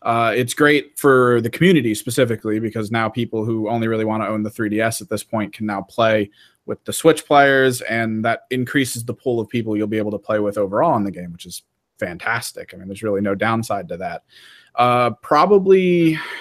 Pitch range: 110-135 Hz